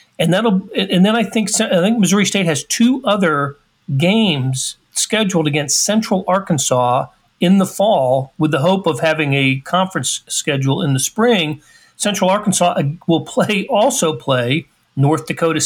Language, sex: English, male